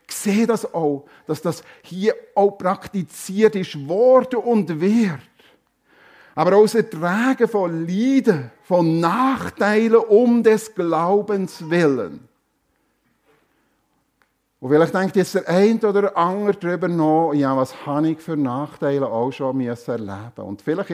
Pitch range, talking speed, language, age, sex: 130-180 Hz, 135 wpm, German, 50-69, male